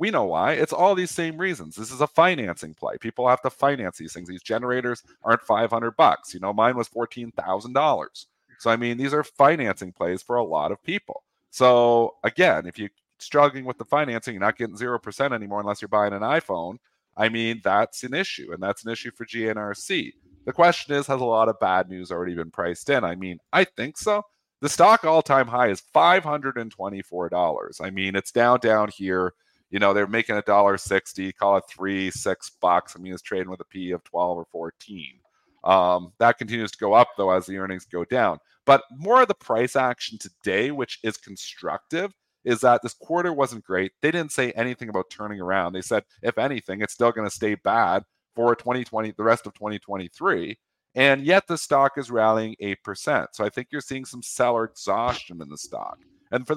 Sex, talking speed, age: male, 205 wpm, 40-59